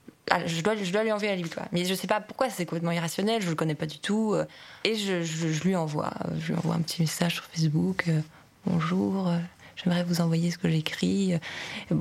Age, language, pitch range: 20-39, French, 175-205 Hz